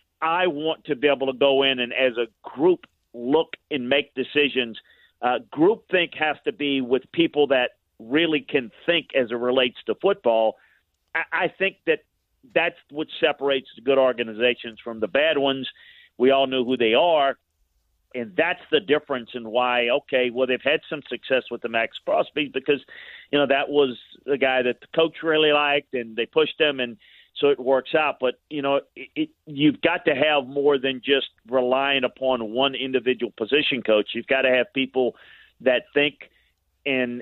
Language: English